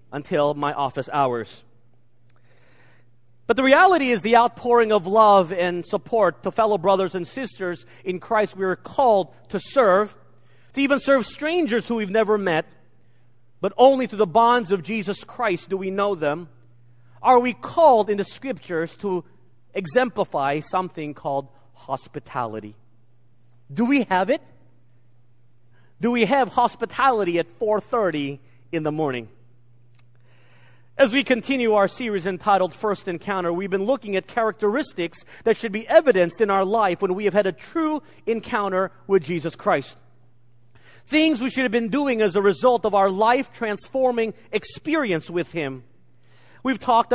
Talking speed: 150 wpm